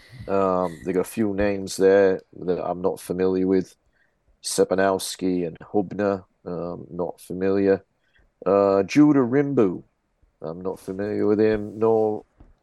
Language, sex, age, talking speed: English, male, 50-69, 130 wpm